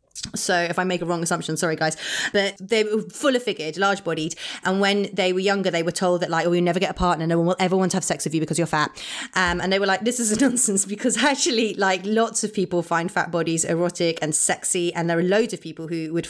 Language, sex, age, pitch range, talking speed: English, female, 30-49, 180-220 Hz, 275 wpm